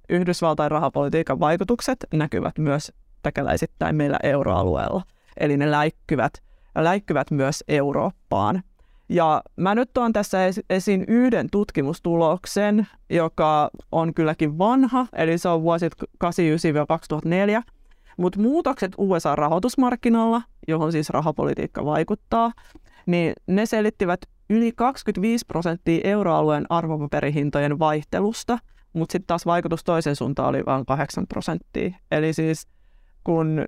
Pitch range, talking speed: 150-200 Hz, 105 wpm